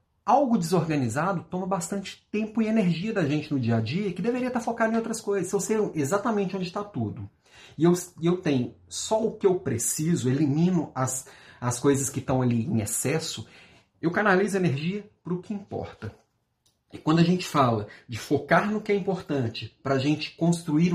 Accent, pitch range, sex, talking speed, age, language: Brazilian, 115-165 Hz, male, 190 wpm, 40-59, Portuguese